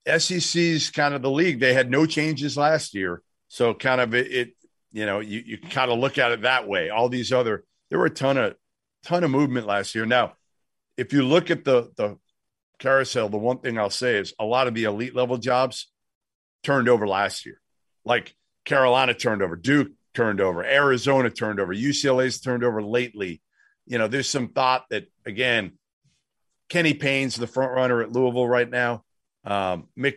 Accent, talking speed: American, 195 wpm